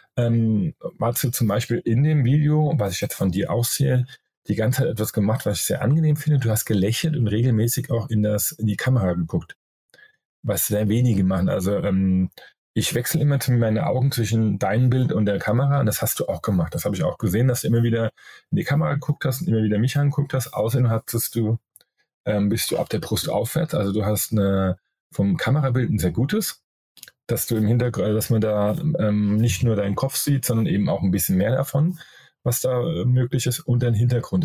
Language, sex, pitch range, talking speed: German, male, 110-140 Hz, 220 wpm